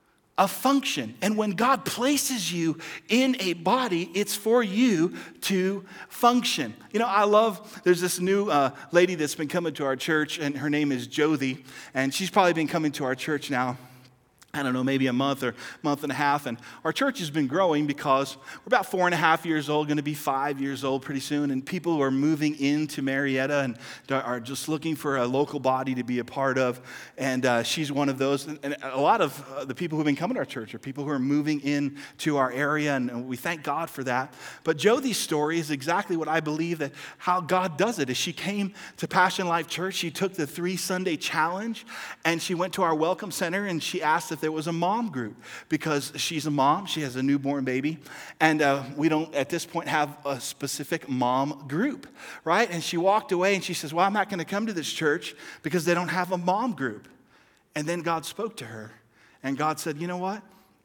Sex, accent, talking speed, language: male, American, 230 wpm, English